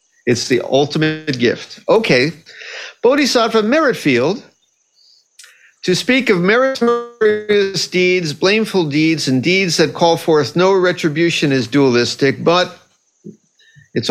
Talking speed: 105 wpm